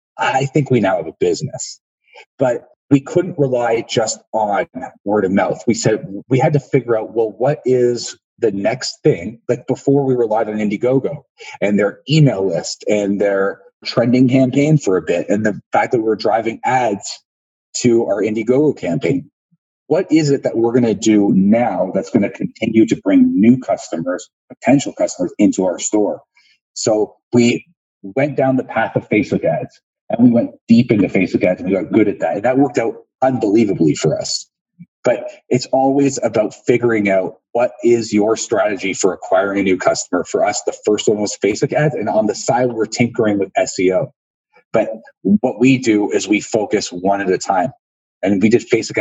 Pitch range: 110-150 Hz